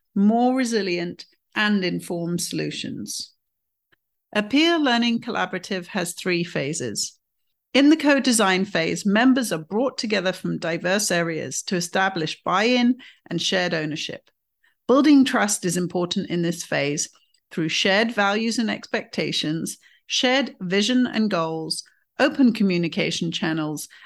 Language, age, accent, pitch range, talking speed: English, 50-69, British, 175-235 Hz, 120 wpm